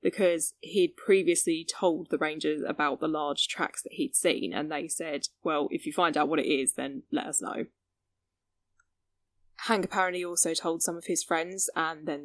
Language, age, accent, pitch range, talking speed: English, 10-29, British, 145-240 Hz, 185 wpm